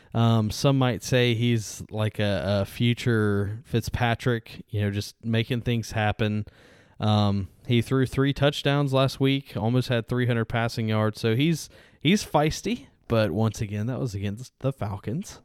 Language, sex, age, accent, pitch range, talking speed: English, male, 10-29, American, 105-130 Hz, 155 wpm